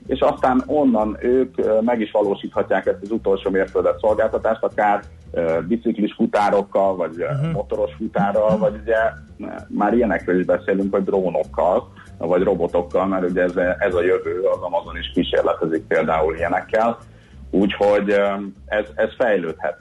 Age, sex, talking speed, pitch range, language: 30-49, male, 130 wpm, 90-120 Hz, Hungarian